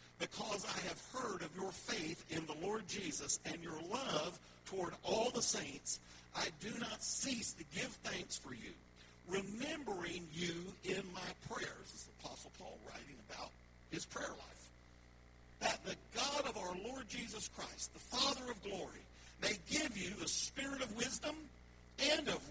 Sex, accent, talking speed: male, American, 170 wpm